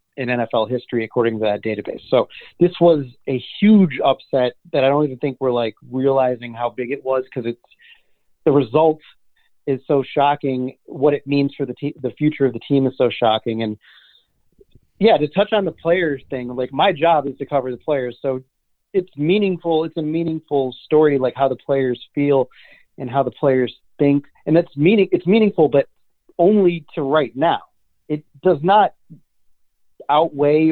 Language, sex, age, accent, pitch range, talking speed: English, male, 30-49, American, 125-155 Hz, 180 wpm